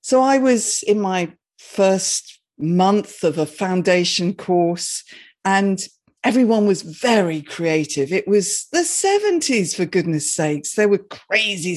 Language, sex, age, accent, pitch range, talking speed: English, female, 50-69, British, 165-210 Hz, 135 wpm